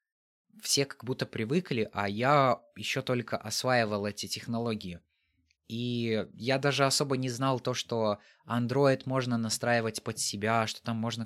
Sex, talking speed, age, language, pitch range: male, 145 wpm, 20-39, Russian, 110-135 Hz